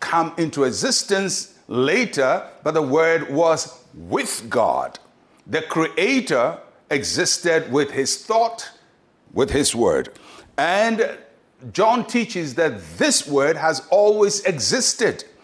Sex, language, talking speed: male, English, 110 wpm